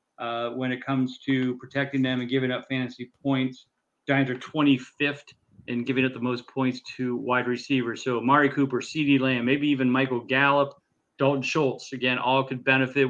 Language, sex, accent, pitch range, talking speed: English, male, American, 125-140 Hz, 180 wpm